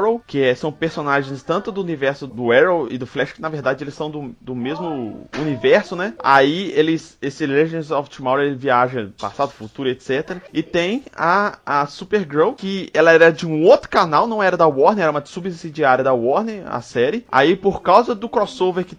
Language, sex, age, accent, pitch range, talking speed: Portuguese, male, 20-39, Brazilian, 135-185 Hz, 195 wpm